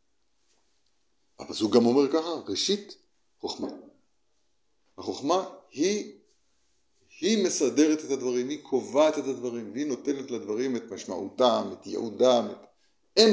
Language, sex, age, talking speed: Hebrew, male, 50-69, 115 wpm